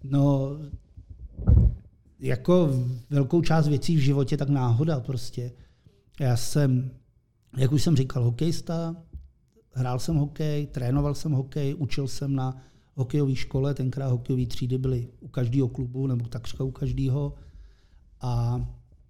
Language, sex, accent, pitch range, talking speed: Czech, male, native, 125-150 Hz, 125 wpm